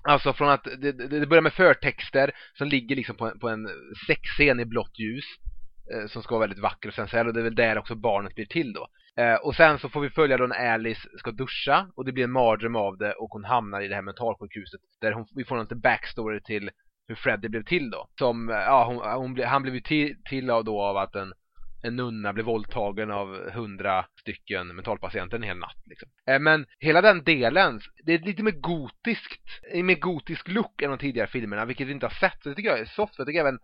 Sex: male